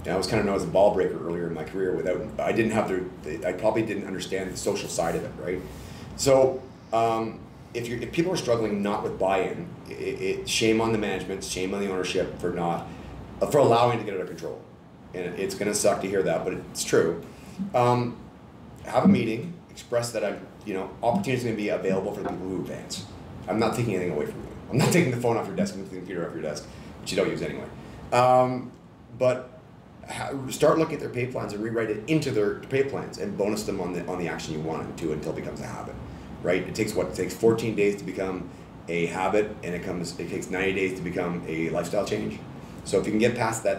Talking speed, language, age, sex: 250 wpm, English, 30-49, male